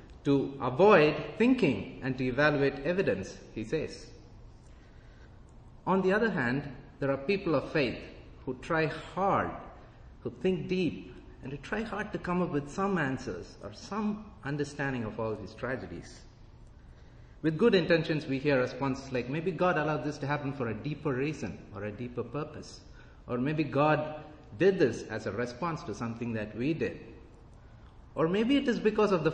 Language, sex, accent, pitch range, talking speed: English, male, Indian, 115-170 Hz, 170 wpm